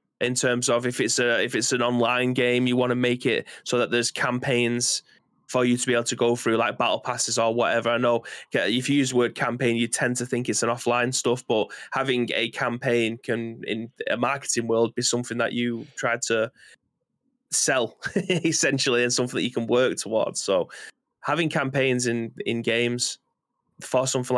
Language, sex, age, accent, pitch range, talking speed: English, male, 20-39, British, 115-125 Hz, 200 wpm